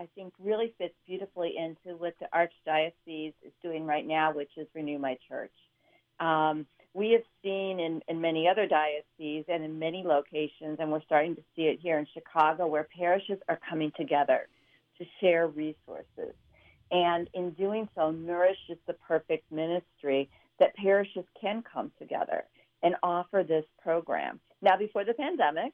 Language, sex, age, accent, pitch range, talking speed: English, female, 40-59, American, 155-185 Hz, 160 wpm